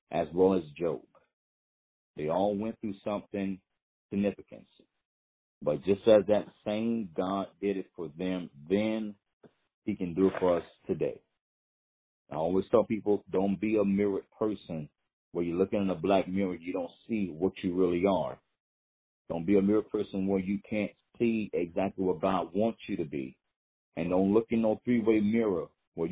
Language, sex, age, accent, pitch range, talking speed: English, male, 40-59, American, 95-110 Hz, 175 wpm